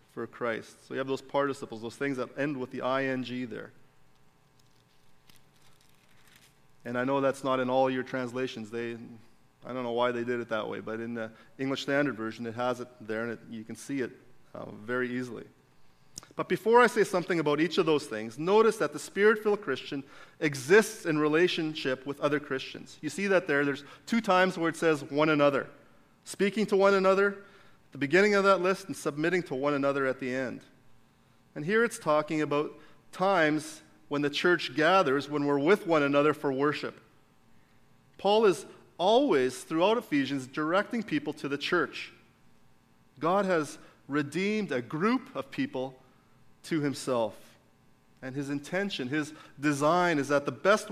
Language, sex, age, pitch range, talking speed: English, male, 30-49, 130-175 Hz, 175 wpm